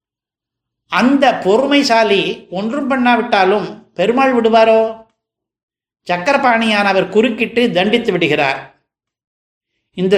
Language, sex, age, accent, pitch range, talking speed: Tamil, male, 60-79, native, 175-235 Hz, 70 wpm